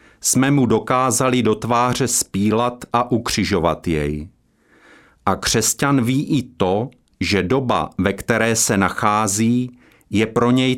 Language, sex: Czech, male